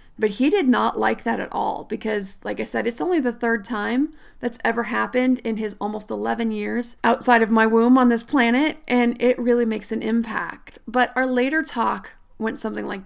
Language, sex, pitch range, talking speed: English, female, 230-270 Hz, 205 wpm